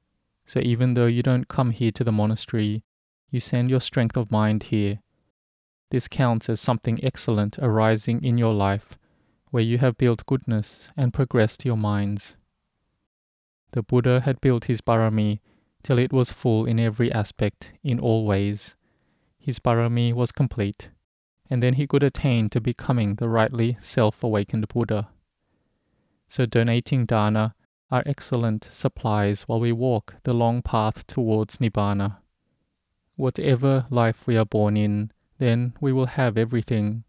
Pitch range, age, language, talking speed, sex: 105-125 Hz, 20-39, English, 145 wpm, male